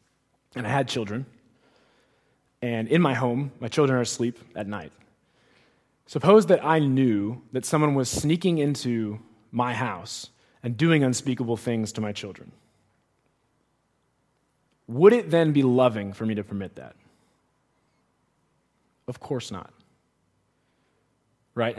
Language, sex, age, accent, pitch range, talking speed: English, male, 20-39, American, 120-155 Hz, 125 wpm